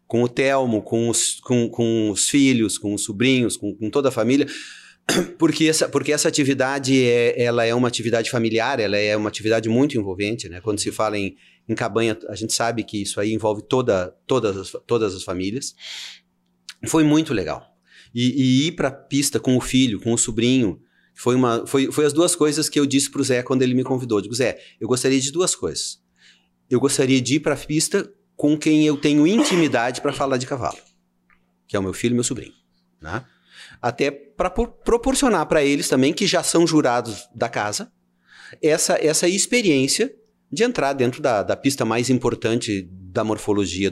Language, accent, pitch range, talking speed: Portuguese, Brazilian, 110-145 Hz, 195 wpm